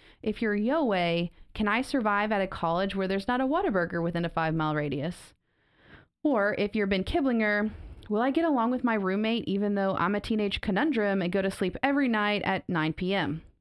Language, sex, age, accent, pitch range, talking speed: English, female, 30-49, American, 185-245 Hz, 200 wpm